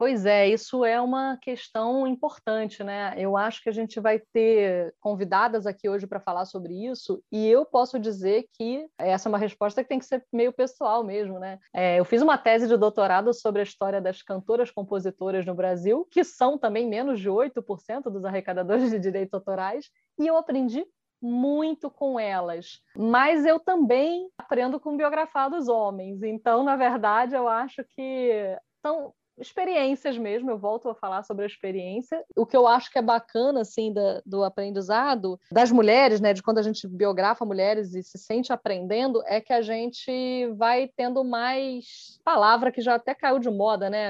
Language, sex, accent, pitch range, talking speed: Portuguese, female, Brazilian, 205-255 Hz, 180 wpm